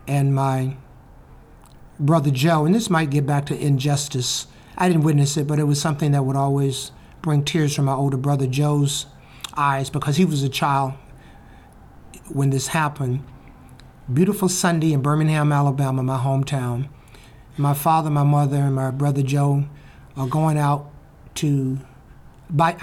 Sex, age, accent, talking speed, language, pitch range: male, 60-79, American, 150 wpm, English, 135-155 Hz